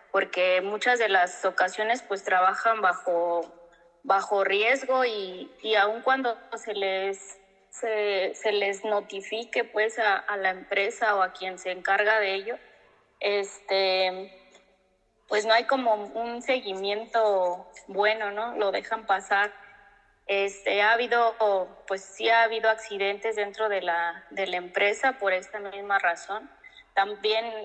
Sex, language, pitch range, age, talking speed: female, Spanish, 190-220 Hz, 20-39, 135 wpm